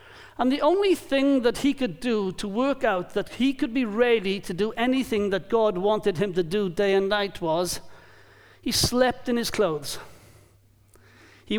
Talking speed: 180 wpm